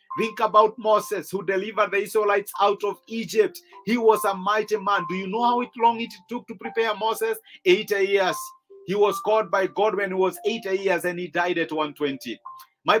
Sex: male